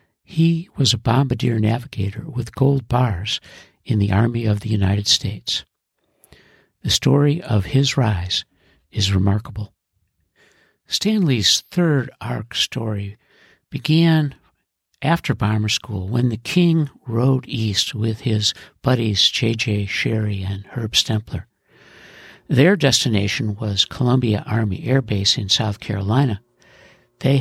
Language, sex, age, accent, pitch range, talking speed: English, male, 60-79, American, 105-135 Hz, 120 wpm